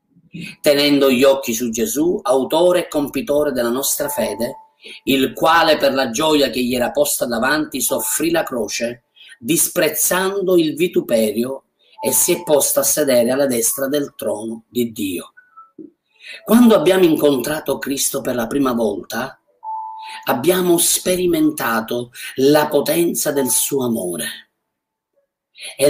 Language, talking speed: Italian, 125 wpm